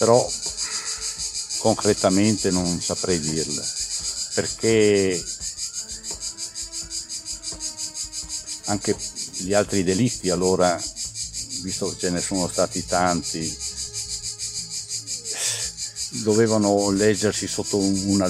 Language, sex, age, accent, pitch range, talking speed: Italian, male, 50-69, native, 95-105 Hz, 70 wpm